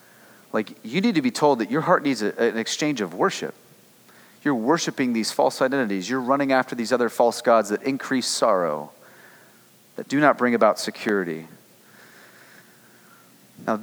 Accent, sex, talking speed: American, male, 155 wpm